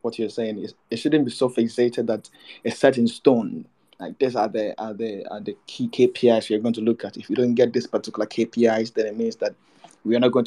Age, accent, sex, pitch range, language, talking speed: 20-39, Nigerian, male, 115-145 Hz, English, 245 wpm